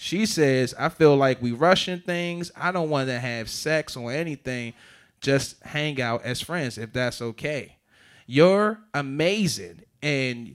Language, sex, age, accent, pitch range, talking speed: English, male, 20-39, American, 145-200 Hz, 155 wpm